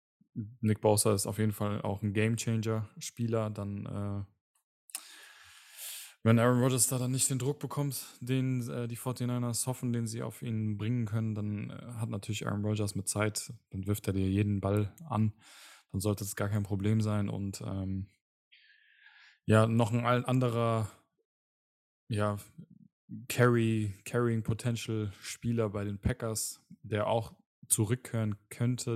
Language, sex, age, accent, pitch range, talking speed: German, male, 10-29, German, 105-120 Hz, 145 wpm